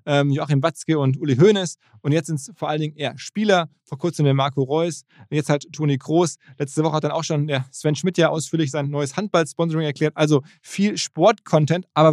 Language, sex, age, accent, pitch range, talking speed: German, male, 20-39, German, 140-170 Hz, 220 wpm